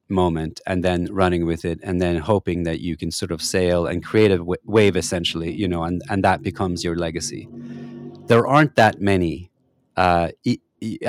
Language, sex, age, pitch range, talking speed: English, male, 30-49, 85-105 Hz, 185 wpm